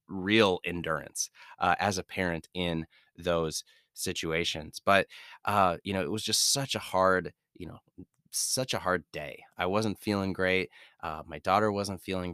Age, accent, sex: 30-49, American, male